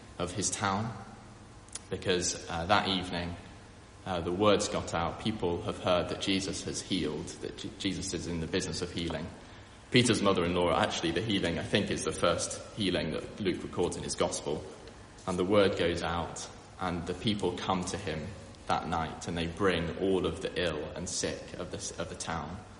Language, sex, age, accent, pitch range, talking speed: English, male, 20-39, British, 85-105 Hz, 190 wpm